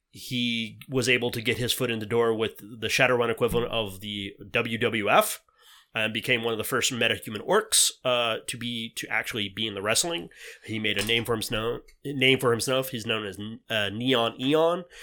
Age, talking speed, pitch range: 30-49, 200 wpm, 110-130 Hz